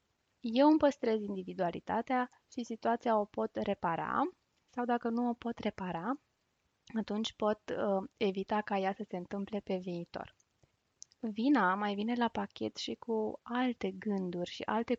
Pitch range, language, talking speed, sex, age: 195-245 Hz, Romanian, 150 wpm, female, 20-39